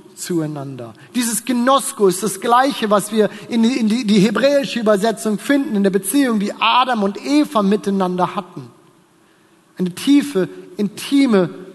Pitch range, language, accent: 195-270 Hz, German, German